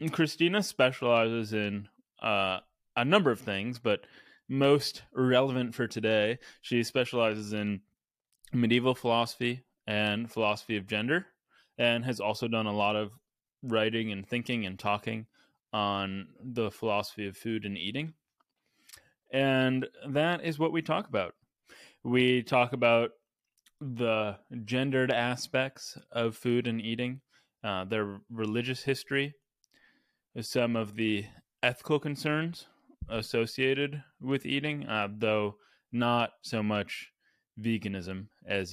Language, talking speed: English, 120 wpm